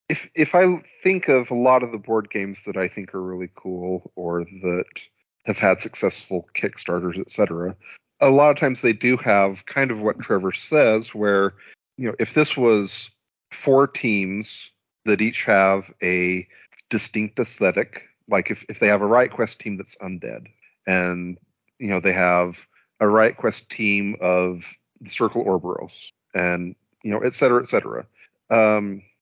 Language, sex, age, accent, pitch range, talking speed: English, male, 40-59, American, 90-110 Hz, 170 wpm